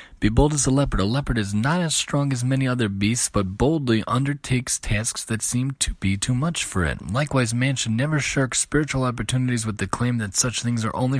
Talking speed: 225 wpm